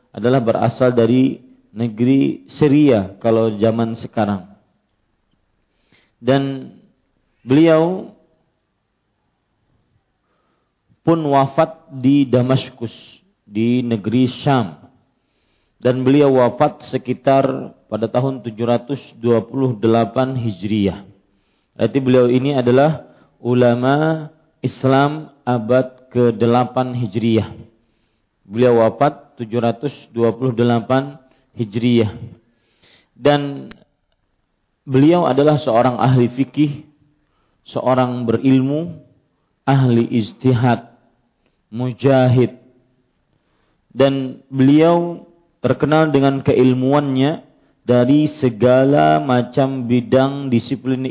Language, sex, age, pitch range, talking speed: Malay, male, 40-59, 115-140 Hz, 70 wpm